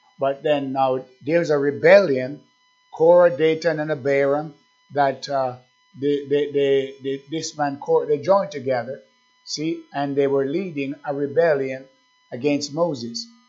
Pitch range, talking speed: 140-195 Hz, 135 wpm